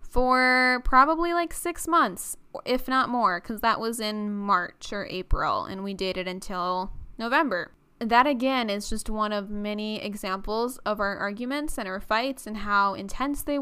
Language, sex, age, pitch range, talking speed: English, female, 10-29, 200-240 Hz, 170 wpm